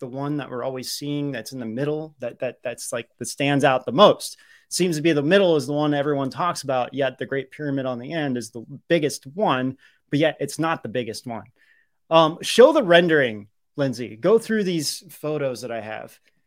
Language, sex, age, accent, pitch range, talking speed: English, male, 30-49, American, 130-170 Hz, 220 wpm